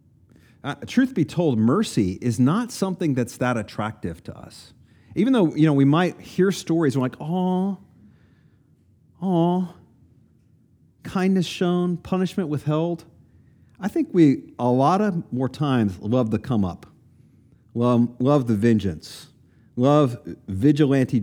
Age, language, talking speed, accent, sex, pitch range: 40-59, English, 135 wpm, American, male, 120-165 Hz